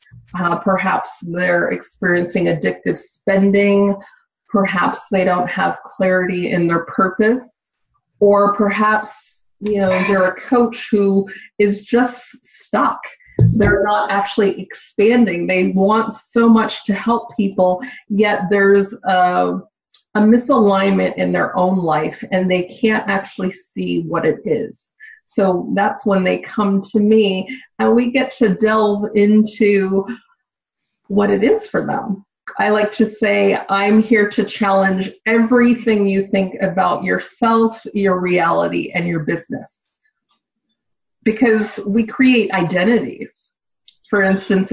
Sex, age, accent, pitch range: female, 30-49, American, 190-225 Hz